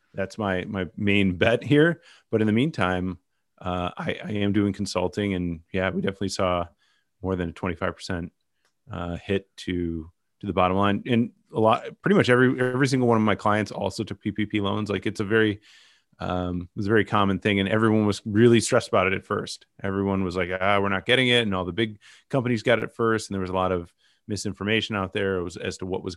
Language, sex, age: English, male, 30-49